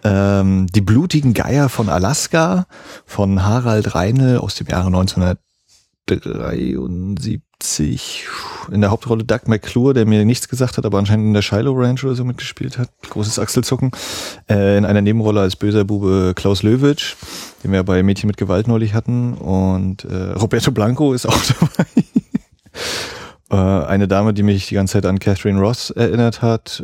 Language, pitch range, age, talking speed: German, 95-115 Hz, 30-49, 160 wpm